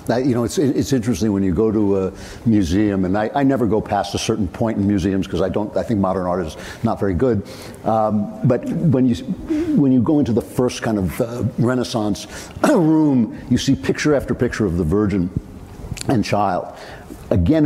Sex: male